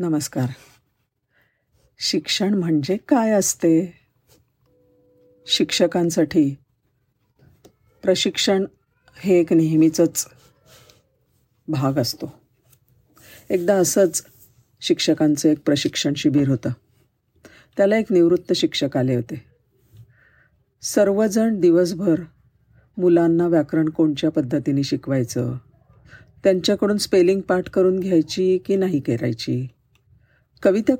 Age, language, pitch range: 50-69, Marathi, 125-180 Hz